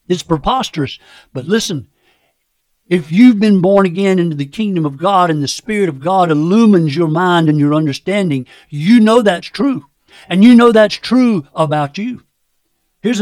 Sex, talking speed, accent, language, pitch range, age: male, 170 wpm, American, English, 155-210 Hz, 60-79